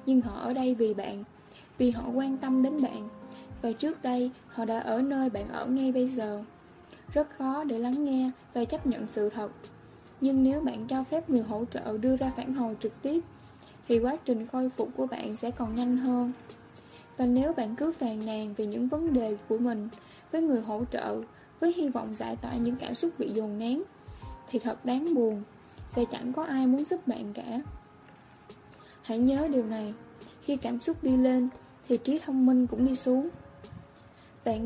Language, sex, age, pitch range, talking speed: Vietnamese, female, 10-29, 225-265 Hz, 200 wpm